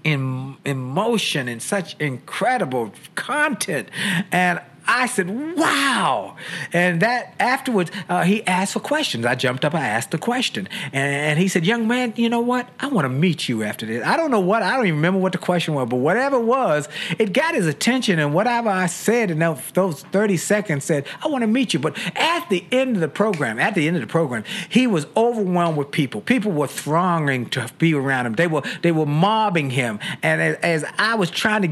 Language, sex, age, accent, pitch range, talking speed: English, male, 50-69, American, 150-220 Hz, 215 wpm